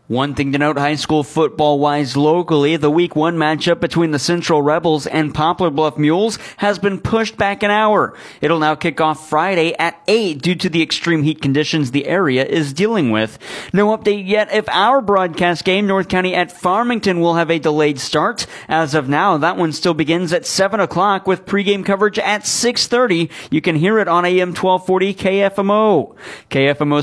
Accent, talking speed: American, 185 wpm